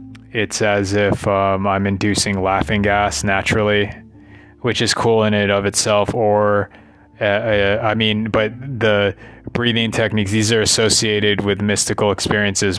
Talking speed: 145 wpm